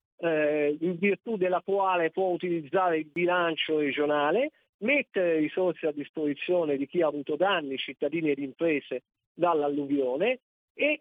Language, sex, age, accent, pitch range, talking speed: Italian, male, 50-69, native, 145-195 Hz, 125 wpm